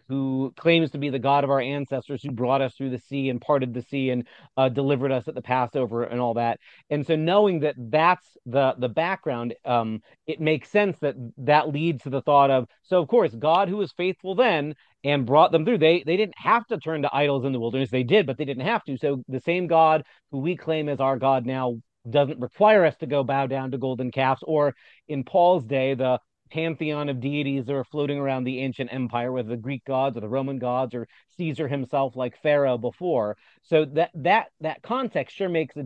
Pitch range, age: 130-155 Hz, 40-59